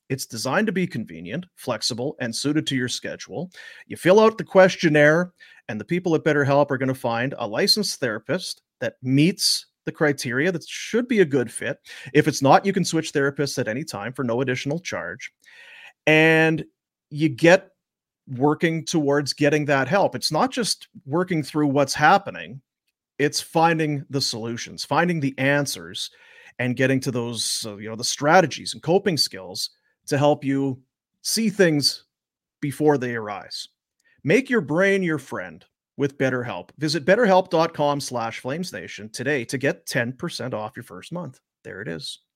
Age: 40-59